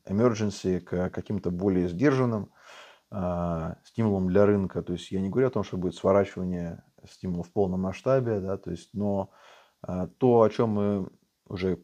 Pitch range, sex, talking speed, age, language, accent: 95-110 Hz, male, 165 wpm, 20-39, Russian, native